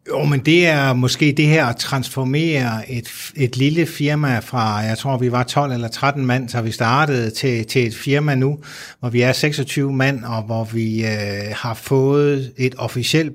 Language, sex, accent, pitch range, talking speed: Danish, male, native, 115-135 Hz, 195 wpm